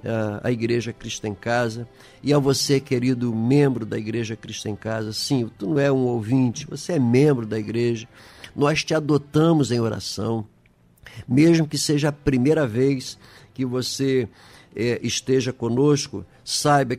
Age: 50-69